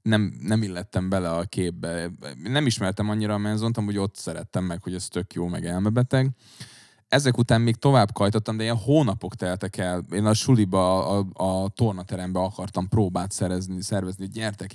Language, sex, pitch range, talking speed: Hungarian, male, 90-110 Hz, 165 wpm